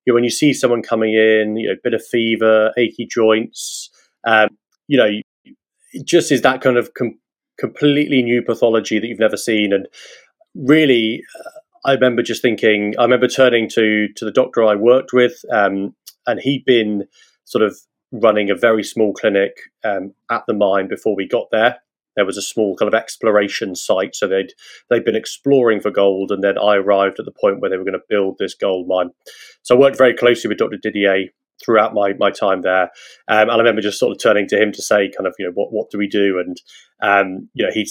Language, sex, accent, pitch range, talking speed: English, male, British, 100-120 Hz, 220 wpm